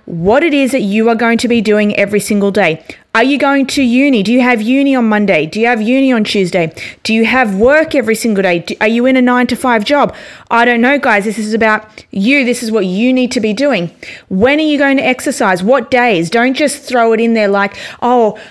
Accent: Australian